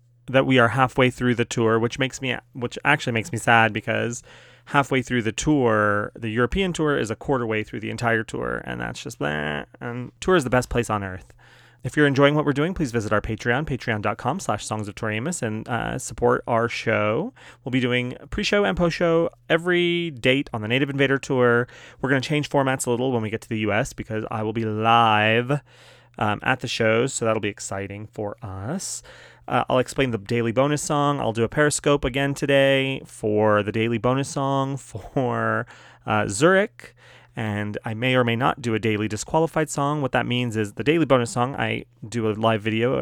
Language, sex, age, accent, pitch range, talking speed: English, male, 30-49, American, 110-135 Hz, 205 wpm